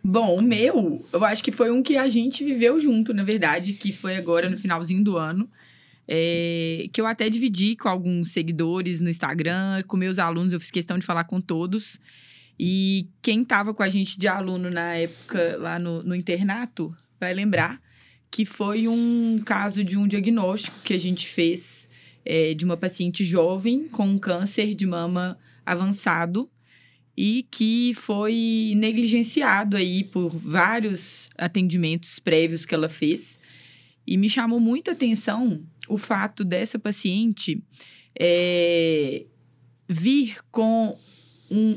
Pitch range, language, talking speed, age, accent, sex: 175-225 Hz, English, 150 wpm, 20-39, Brazilian, female